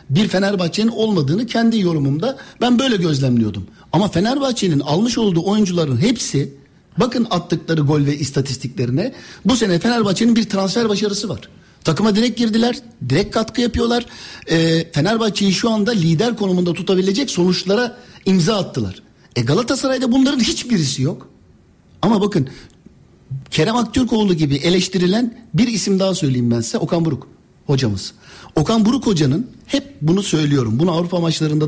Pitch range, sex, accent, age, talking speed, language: 140-220 Hz, male, native, 60-79, 135 wpm, Turkish